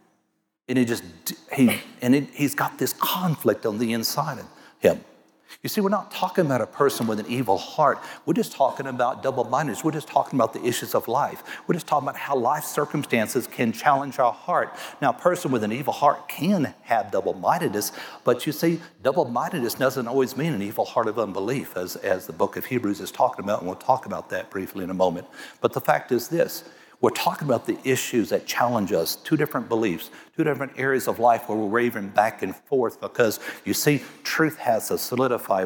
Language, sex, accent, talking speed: English, male, American, 215 wpm